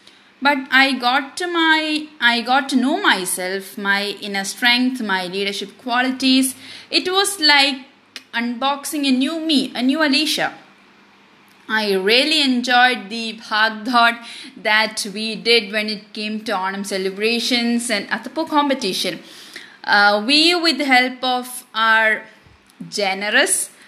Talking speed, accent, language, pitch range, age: 130 wpm, Indian, English, 210-270 Hz, 20-39